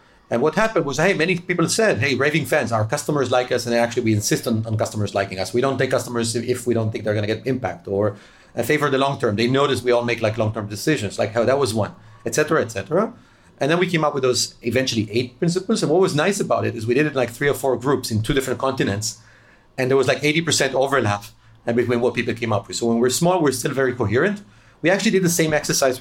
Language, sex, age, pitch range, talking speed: English, male, 30-49, 115-150 Hz, 270 wpm